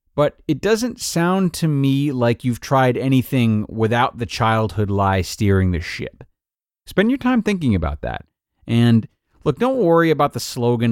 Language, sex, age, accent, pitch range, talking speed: English, male, 30-49, American, 100-145 Hz, 165 wpm